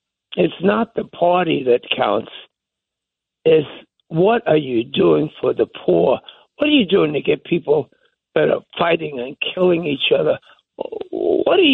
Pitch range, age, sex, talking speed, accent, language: 170-280 Hz, 60-79, male, 155 wpm, American, English